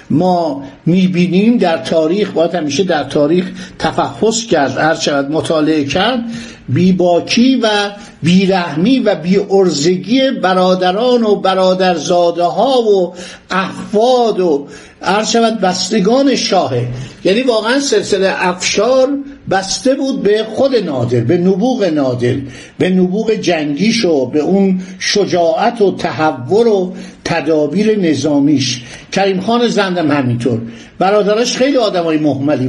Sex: male